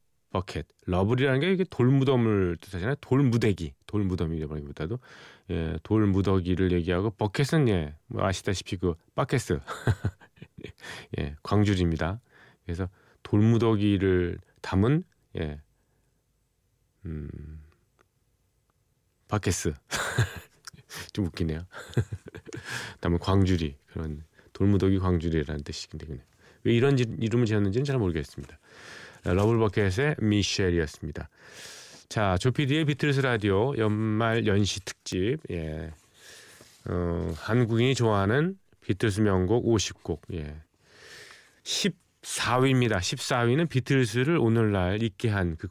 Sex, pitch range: male, 85-115 Hz